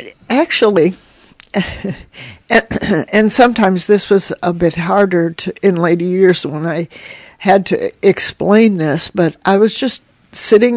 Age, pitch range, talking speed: 60-79, 170-210 Hz, 125 wpm